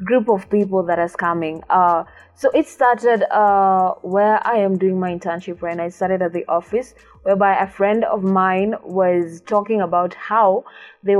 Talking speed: 175 wpm